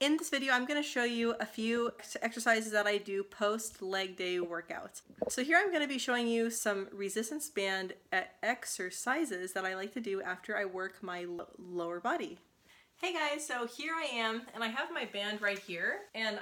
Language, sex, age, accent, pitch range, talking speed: English, female, 20-39, American, 185-240 Hz, 195 wpm